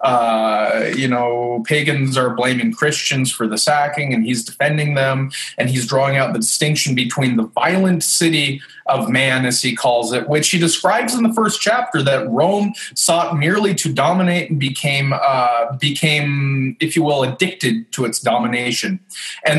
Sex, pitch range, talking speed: male, 125-175 Hz, 170 wpm